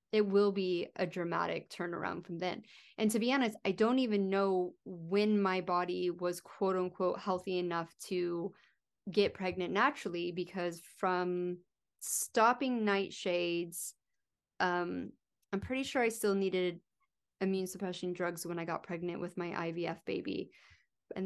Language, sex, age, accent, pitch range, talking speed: English, female, 20-39, American, 170-200 Hz, 145 wpm